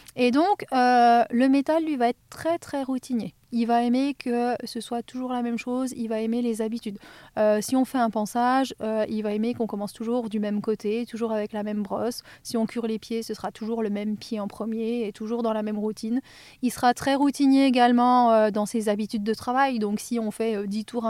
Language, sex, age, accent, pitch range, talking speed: French, female, 30-49, French, 215-245 Hz, 240 wpm